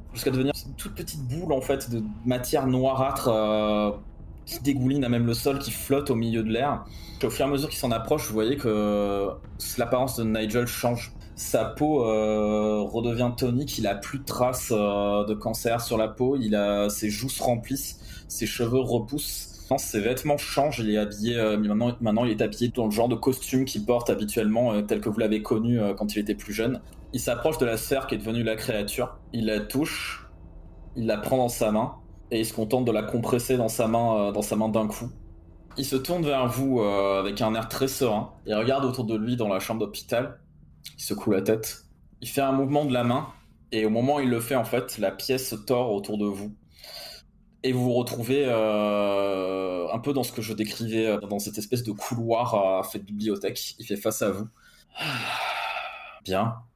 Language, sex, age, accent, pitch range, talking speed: French, male, 20-39, French, 105-125 Hz, 220 wpm